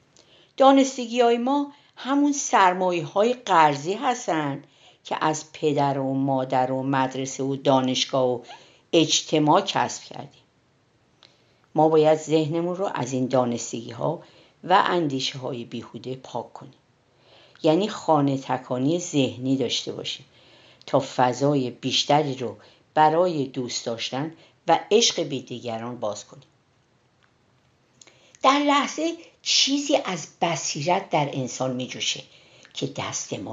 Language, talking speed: Persian, 115 wpm